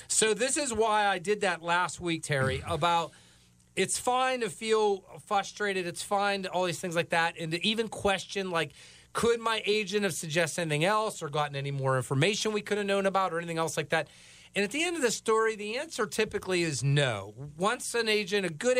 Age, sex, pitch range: 40-59, male, 160-210 Hz